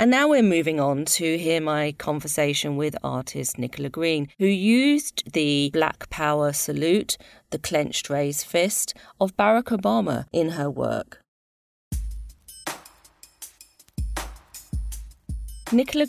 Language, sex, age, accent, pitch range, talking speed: English, female, 40-59, British, 145-190 Hz, 110 wpm